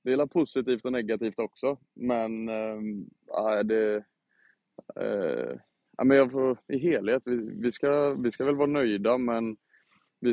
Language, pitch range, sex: Swedish, 105-115 Hz, male